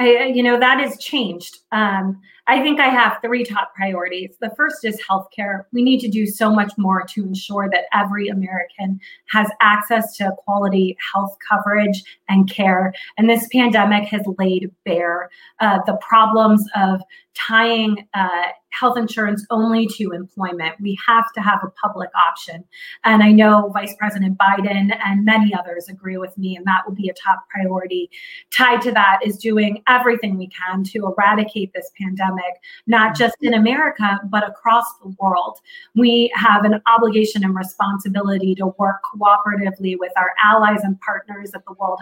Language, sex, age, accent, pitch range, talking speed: English, female, 30-49, American, 195-225 Hz, 165 wpm